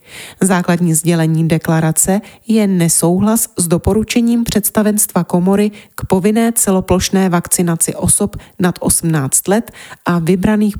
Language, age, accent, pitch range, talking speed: Czech, 30-49, native, 165-215 Hz, 105 wpm